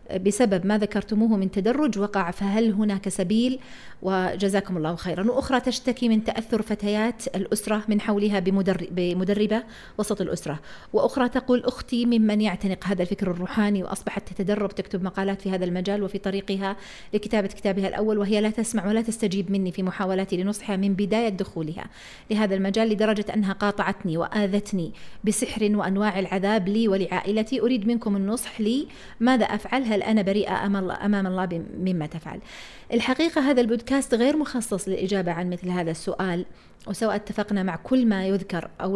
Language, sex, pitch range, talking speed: Arabic, female, 190-220 Hz, 145 wpm